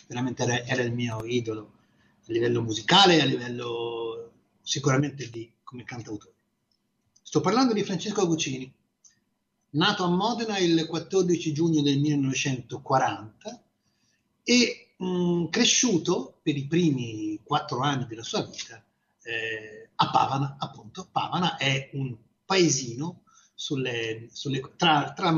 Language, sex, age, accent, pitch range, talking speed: Italian, male, 30-49, native, 120-165 Hz, 120 wpm